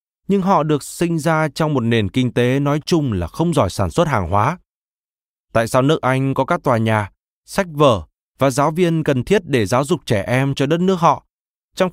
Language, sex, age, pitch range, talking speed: Vietnamese, male, 20-39, 115-160 Hz, 220 wpm